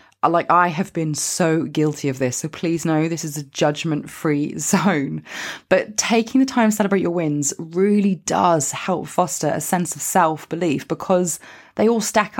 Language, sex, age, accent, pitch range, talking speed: English, female, 20-39, British, 165-215 Hz, 185 wpm